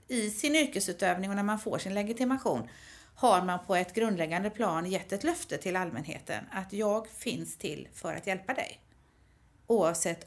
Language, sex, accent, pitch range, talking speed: Swedish, female, native, 175-230 Hz, 170 wpm